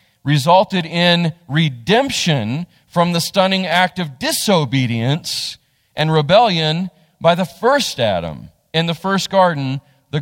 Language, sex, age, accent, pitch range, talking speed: English, male, 40-59, American, 130-185 Hz, 115 wpm